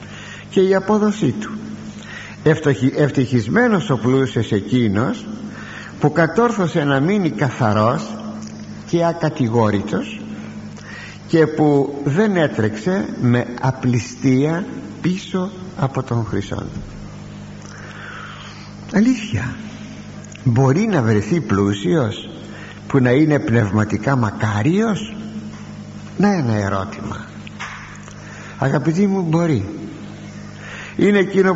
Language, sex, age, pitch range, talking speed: Greek, male, 60-79, 115-190 Hz, 80 wpm